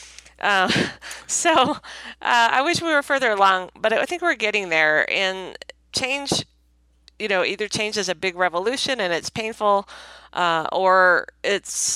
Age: 40-59